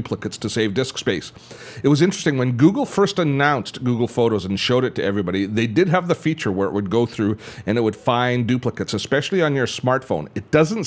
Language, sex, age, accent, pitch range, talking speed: English, male, 40-59, American, 105-140 Hz, 220 wpm